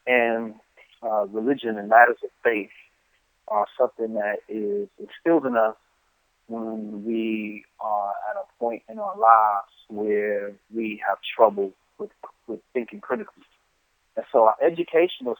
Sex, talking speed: male, 135 wpm